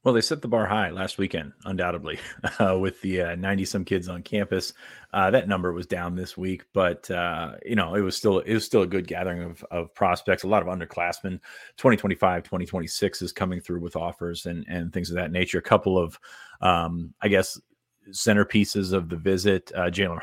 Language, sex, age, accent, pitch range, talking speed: English, male, 30-49, American, 90-100 Hz, 210 wpm